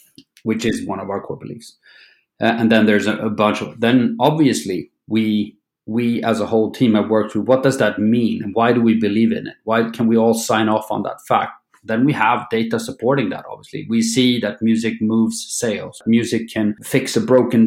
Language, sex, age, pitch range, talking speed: English, male, 30-49, 105-120 Hz, 215 wpm